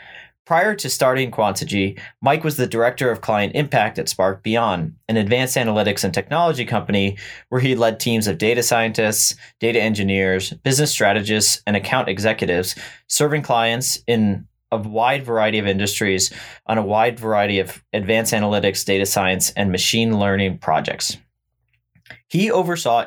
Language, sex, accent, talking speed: English, male, American, 150 wpm